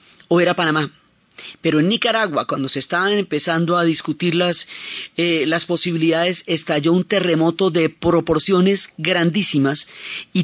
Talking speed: 130 wpm